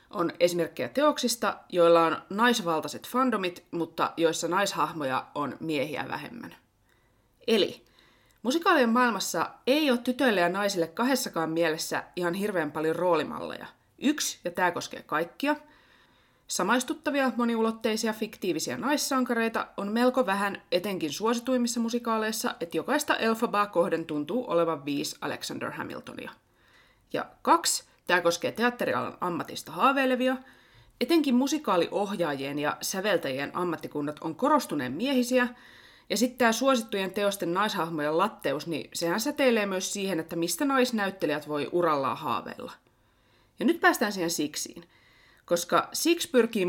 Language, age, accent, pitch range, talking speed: Finnish, 20-39, native, 170-255 Hz, 120 wpm